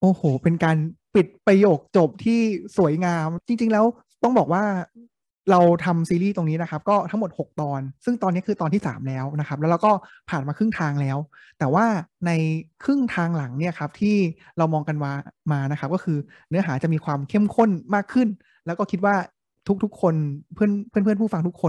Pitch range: 155-200 Hz